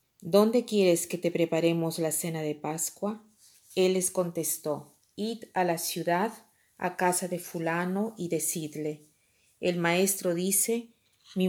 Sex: female